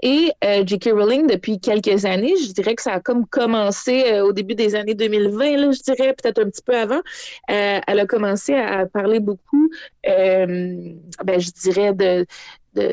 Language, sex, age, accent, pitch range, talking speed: French, female, 30-49, Canadian, 195-265 Hz, 195 wpm